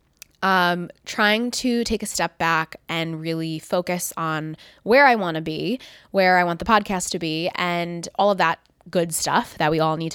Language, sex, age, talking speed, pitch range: English, female, 20-39, 195 wpm, 165-210 Hz